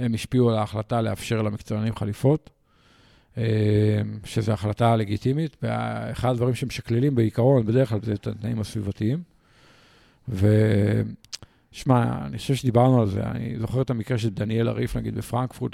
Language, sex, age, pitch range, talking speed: Hebrew, male, 50-69, 110-130 Hz, 135 wpm